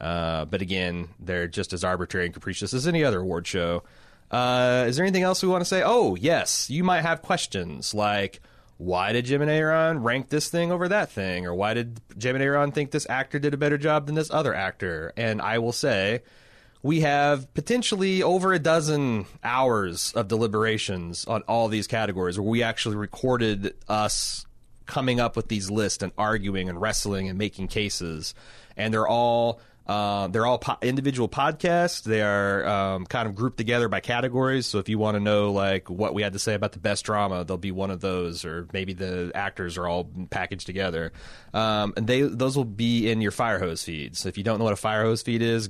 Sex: male